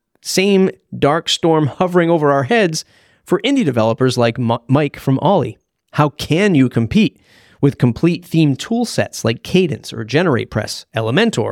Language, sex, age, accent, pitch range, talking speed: English, male, 30-49, American, 120-155 Hz, 145 wpm